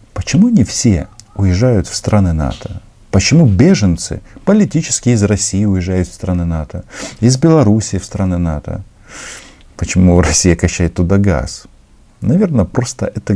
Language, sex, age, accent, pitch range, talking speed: Russian, male, 50-69, native, 85-110 Hz, 130 wpm